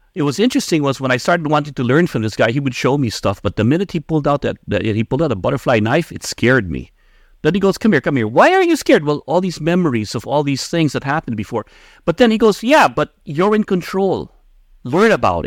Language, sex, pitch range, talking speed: English, male, 110-150 Hz, 265 wpm